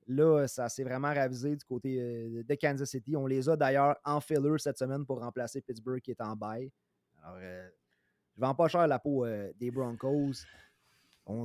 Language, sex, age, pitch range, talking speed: French, male, 30-49, 125-165 Hz, 200 wpm